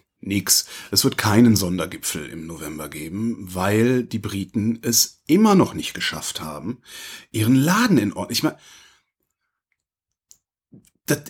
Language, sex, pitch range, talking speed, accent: German, male, 115-195 Hz, 115 wpm, German